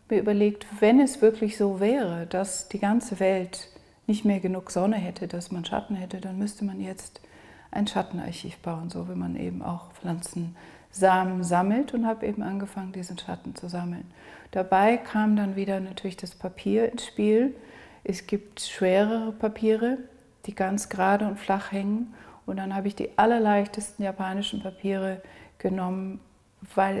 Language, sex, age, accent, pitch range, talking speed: German, female, 40-59, German, 185-205 Hz, 160 wpm